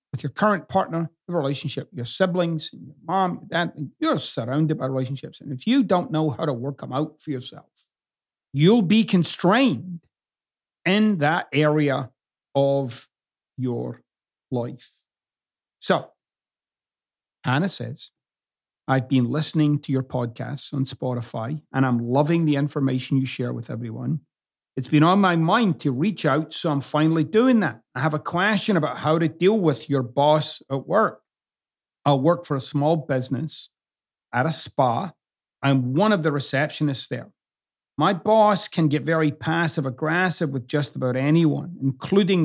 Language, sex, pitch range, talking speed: English, male, 135-170 Hz, 155 wpm